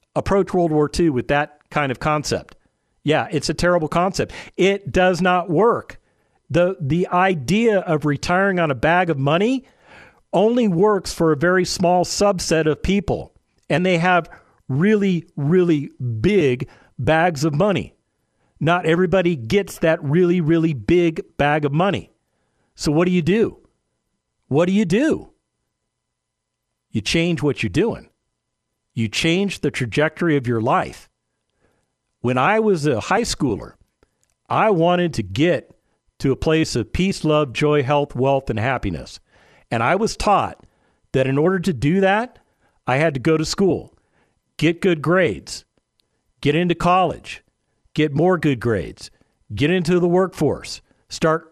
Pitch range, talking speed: 145-185 Hz, 150 wpm